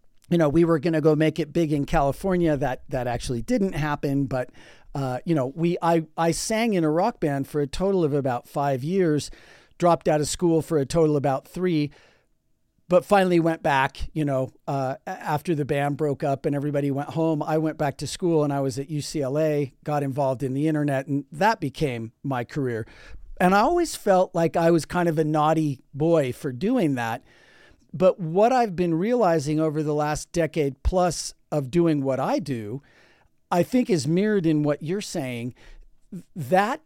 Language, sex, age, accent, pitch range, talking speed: English, male, 40-59, American, 140-175 Hz, 195 wpm